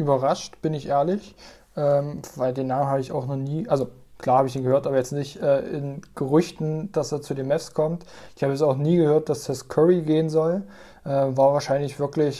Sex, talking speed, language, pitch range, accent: male, 225 wpm, German, 140-165 Hz, German